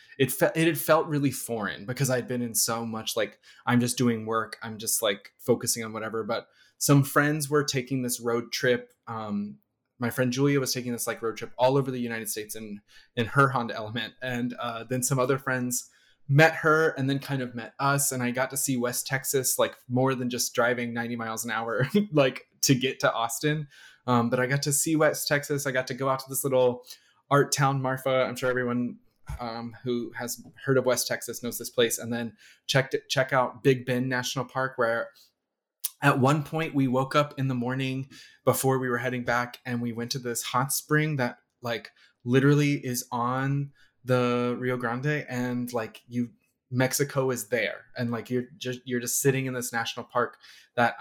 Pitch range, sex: 120-135 Hz, male